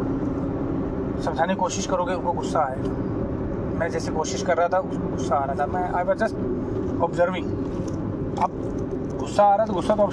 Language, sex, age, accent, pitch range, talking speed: Hindi, male, 30-49, native, 160-205 Hz, 180 wpm